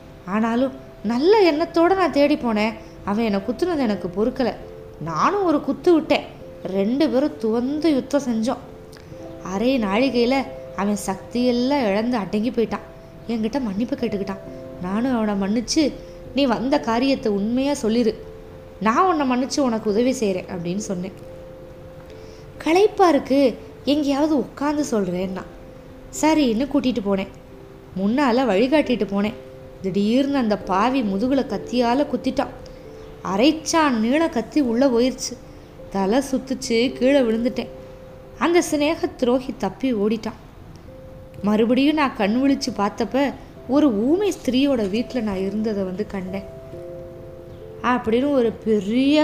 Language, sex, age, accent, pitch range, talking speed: Tamil, female, 20-39, native, 200-275 Hz, 115 wpm